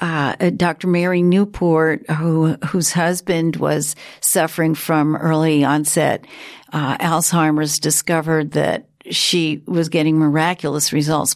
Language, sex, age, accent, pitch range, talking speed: English, female, 50-69, American, 155-175 Hz, 110 wpm